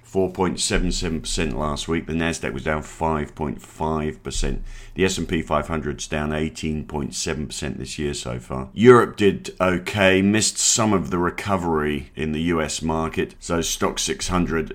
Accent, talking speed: British, 130 wpm